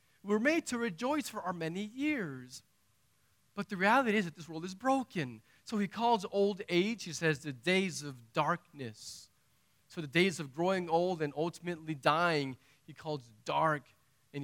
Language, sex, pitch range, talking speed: English, male, 130-180 Hz, 170 wpm